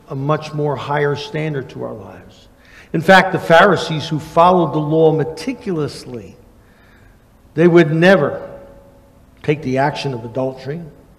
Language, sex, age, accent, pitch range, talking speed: English, male, 60-79, American, 135-180 Hz, 135 wpm